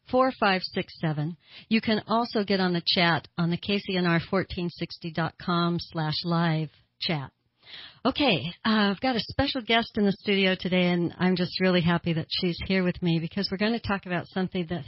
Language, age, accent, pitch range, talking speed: English, 60-79, American, 165-195 Hz, 175 wpm